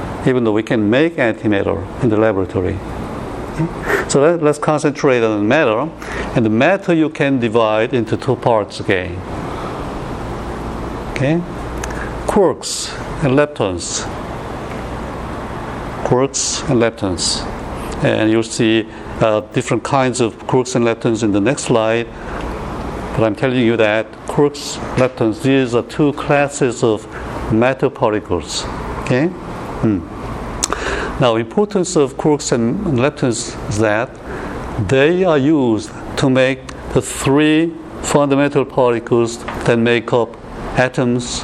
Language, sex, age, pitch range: Korean, male, 60-79, 110-135 Hz